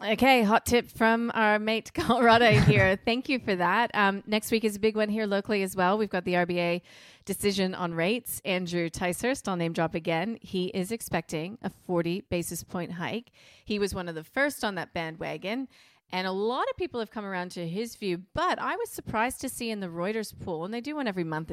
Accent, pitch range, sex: American, 170-220 Hz, female